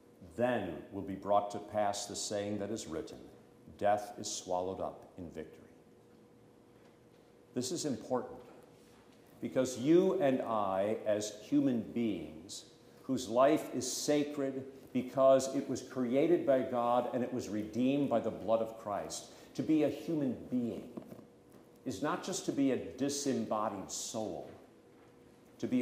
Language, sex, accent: English, male, American